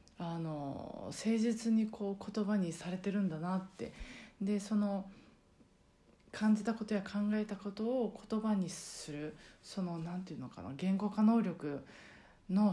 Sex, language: female, Japanese